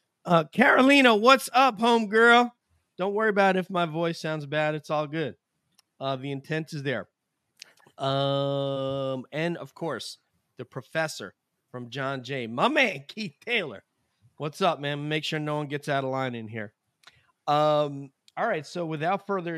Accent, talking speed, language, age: American, 170 wpm, English, 30-49